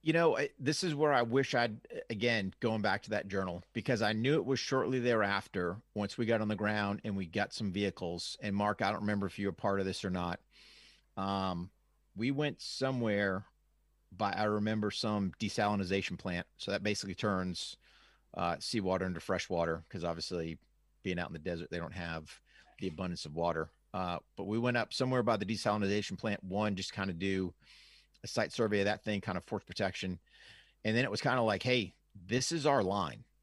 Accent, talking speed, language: American, 205 wpm, English